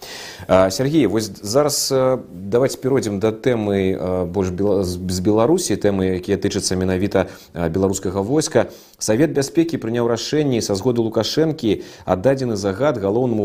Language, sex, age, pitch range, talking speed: Russian, male, 30-49, 95-125 Hz, 105 wpm